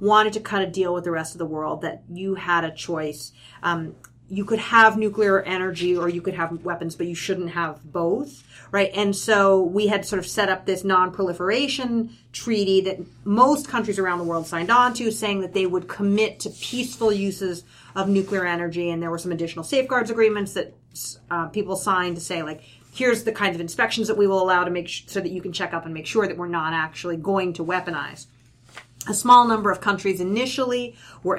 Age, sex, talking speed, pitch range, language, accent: 30-49, female, 215 wpm, 170-210 Hz, English, American